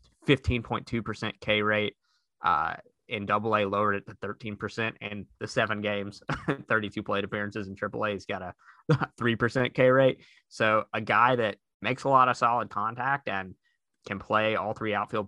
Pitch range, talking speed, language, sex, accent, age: 100-120 Hz, 180 wpm, English, male, American, 20-39